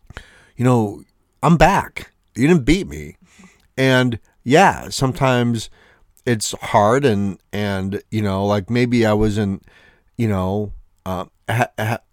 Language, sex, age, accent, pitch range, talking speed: English, male, 40-59, American, 95-130 Hz, 130 wpm